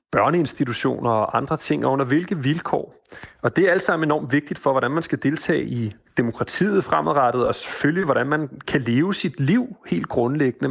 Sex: male